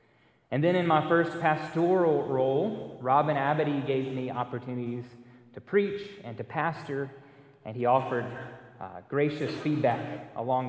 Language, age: English, 30-49